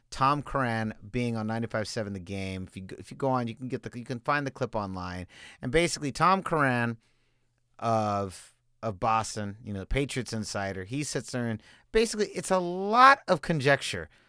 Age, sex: 30-49, male